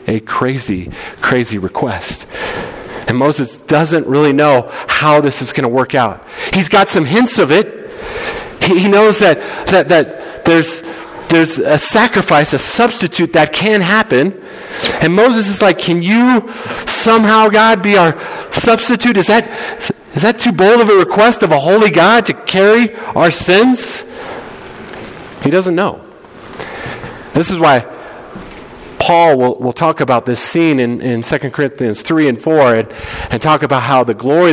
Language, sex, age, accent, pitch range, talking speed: English, male, 40-59, American, 130-205 Hz, 160 wpm